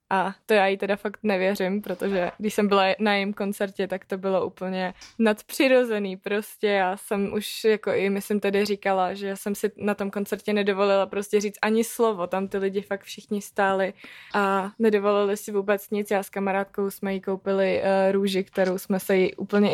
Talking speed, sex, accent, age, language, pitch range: 195 wpm, female, native, 20-39, Czech, 190-210 Hz